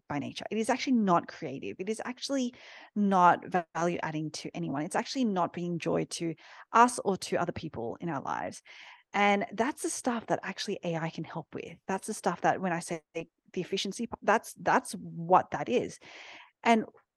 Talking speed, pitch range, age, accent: 190 wpm, 170-225 Hz, 30-49, Australian